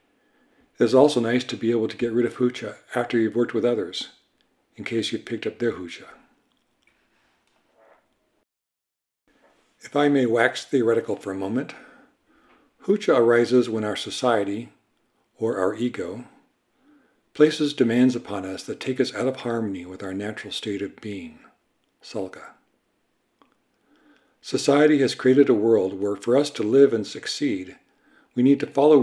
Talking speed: 150 wpm